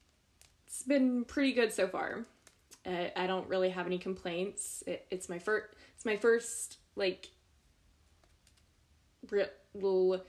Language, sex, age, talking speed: English, female, 20-39, 115 wpm